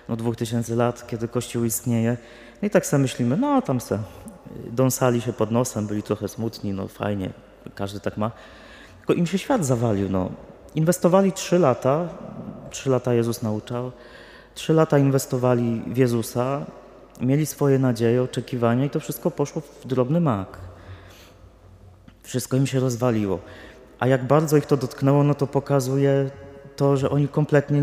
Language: Polish